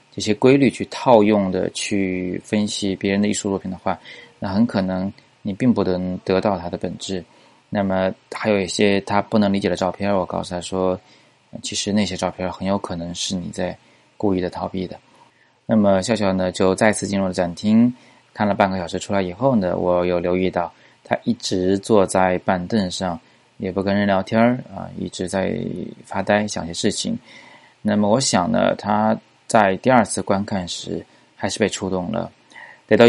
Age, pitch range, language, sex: 20-39, 95-105 Hz, Chinese, male